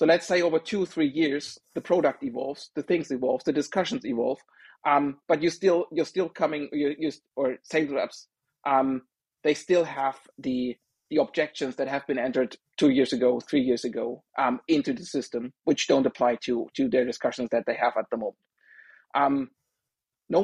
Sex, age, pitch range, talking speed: male, 30-49, 135-165 Hz, 190 wpm